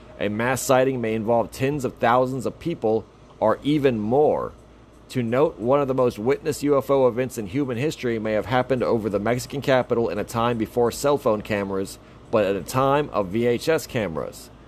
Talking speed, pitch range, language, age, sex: 190 wpm, 115-130 Hz, English, 30-49, male